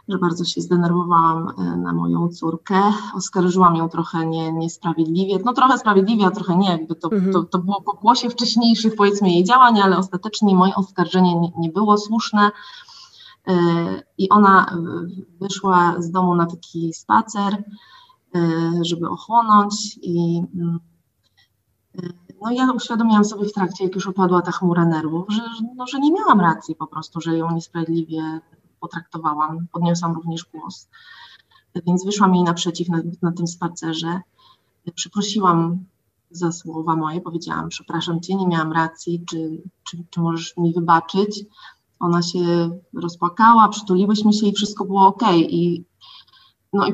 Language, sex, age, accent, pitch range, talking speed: Polish, female, 30-49, native, 170-215 Hz, 140 wpm